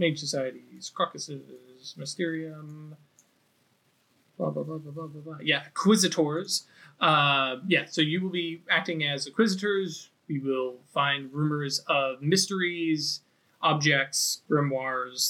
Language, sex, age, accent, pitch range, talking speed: English, male, 20-39, American, 140-175 Hz, 110 wpm